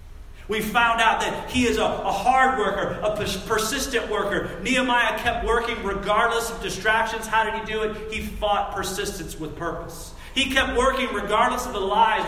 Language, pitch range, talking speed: English, 155-225 Hz, 175 wpm